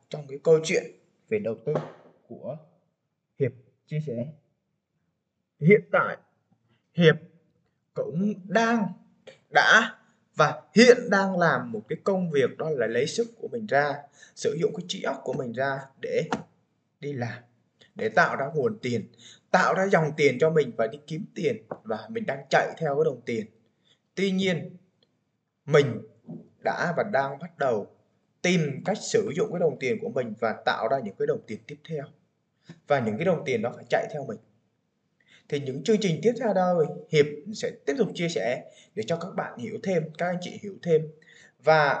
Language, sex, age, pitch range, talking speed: Vietnamese, male, 20-39, 145-205 Hz, 180 wpm